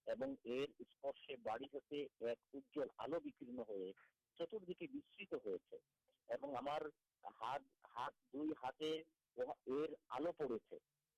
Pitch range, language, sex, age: 140-225 Hz, Urdu, male, 50-69